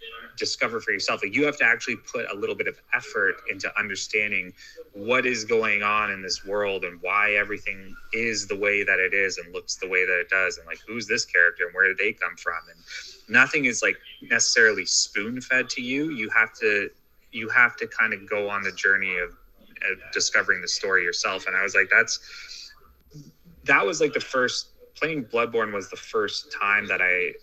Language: English